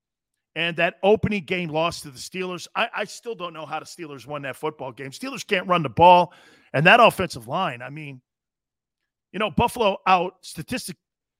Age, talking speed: 40-59, 190 wpm